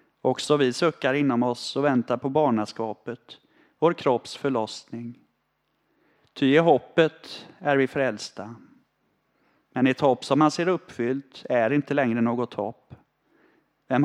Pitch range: 115-140 Hz